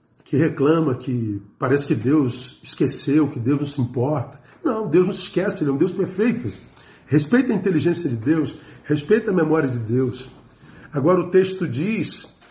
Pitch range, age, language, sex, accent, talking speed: 130-170 Hz, 50-69, Portuguese, male, Brazilian, 175 wpm